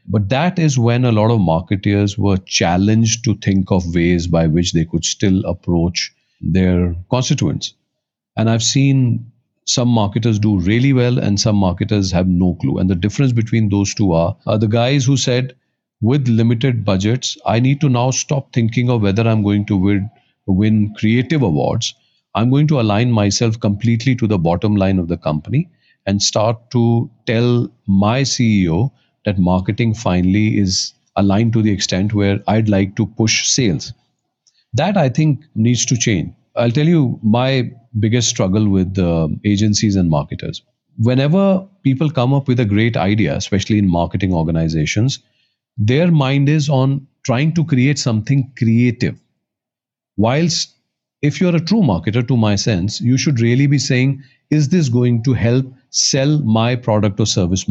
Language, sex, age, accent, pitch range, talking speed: English, male, 40-59, Indian, 100-130 Hz, 165 wpm